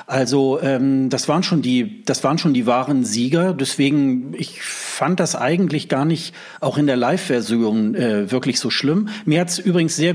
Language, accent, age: German, German, 40-59